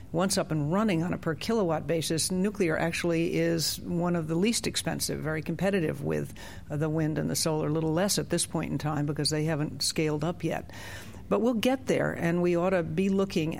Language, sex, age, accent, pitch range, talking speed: English, female, 60-79, American, 150-180 Hz, 215 wpm